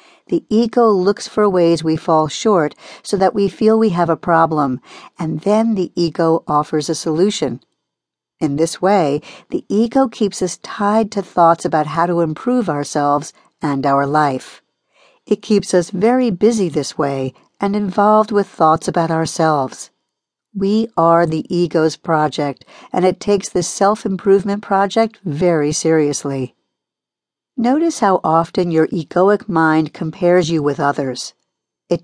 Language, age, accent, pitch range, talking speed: English, 50-69, American, 155-205 Hz, 145 wpm